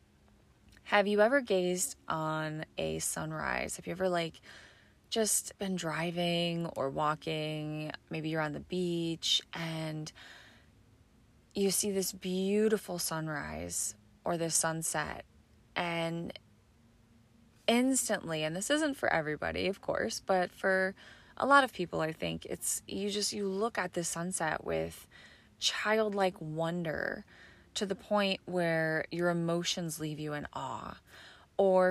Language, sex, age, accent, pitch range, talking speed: English, female, 20-39, American, 155-195 Hz, 130 wpm